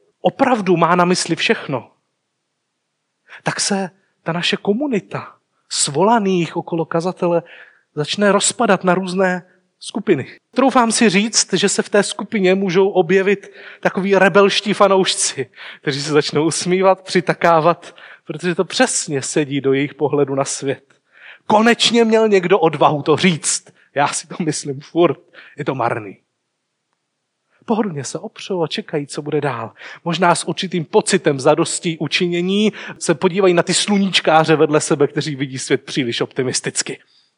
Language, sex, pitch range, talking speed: Czech, male, 160-200 Hz, 135 wpm